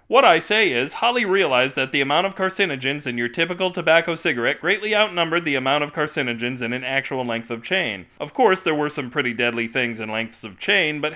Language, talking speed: English, 220 wpm